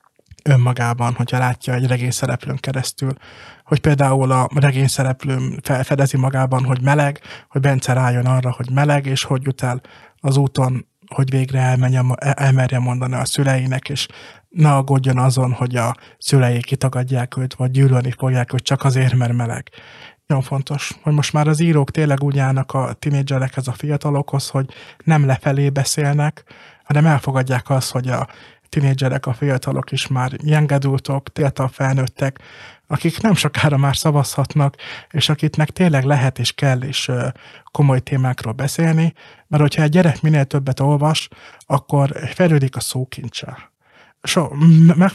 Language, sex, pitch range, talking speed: Hungarian, male, 130-145 Hz, 140 wpm